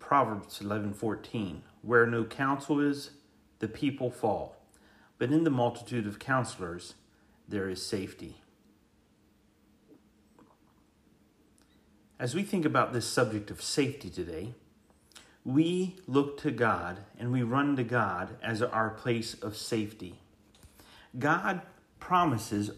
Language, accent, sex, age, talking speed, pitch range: English, American, male, 40-59, 115 wpm, 105-140 Hz